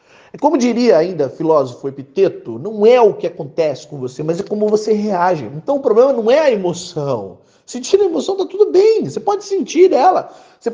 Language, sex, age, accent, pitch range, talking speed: Portuguese, male, 40-59, Brazilian, 165-255 Hz, 195 wpm